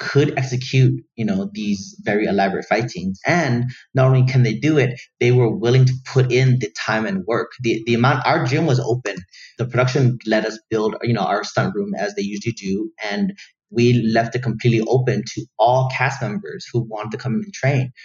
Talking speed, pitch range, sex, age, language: 205 wpm, 115-135 Hz, male, 30-49, English